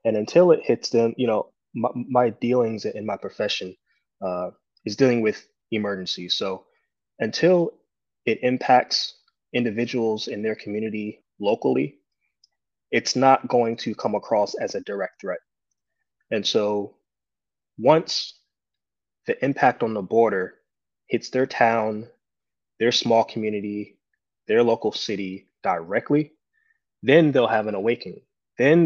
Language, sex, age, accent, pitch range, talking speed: English, male, 20-39, American, 105-130 Hz, 125 wpm